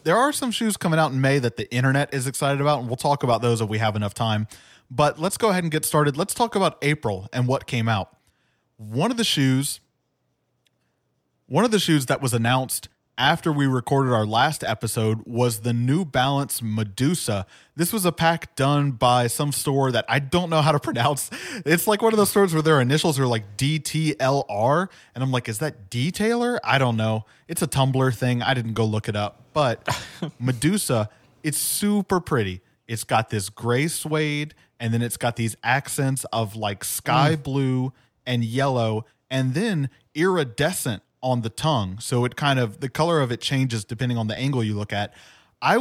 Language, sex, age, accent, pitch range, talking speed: English, male, 20-39, American, 115-155 Hz, 200 wpm